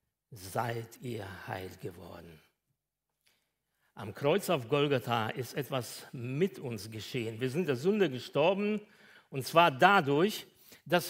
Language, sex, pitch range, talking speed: German, male, 125-190 Hz, 120 wpm